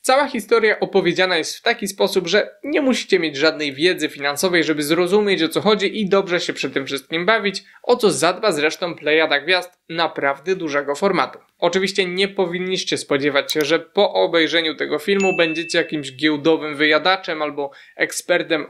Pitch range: 155-200 Hz